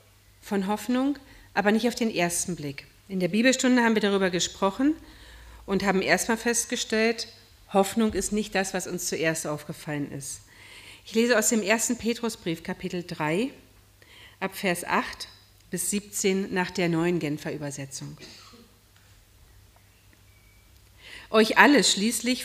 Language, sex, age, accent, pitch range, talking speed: German, female, 40-59, German, 150-215 Hz, 130 wpm